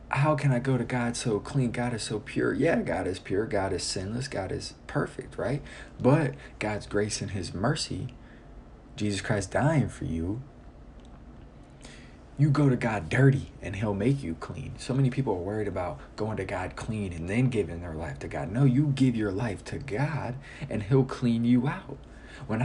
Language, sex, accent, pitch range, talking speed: English, male, American, 105-135 Hz, 195 wpm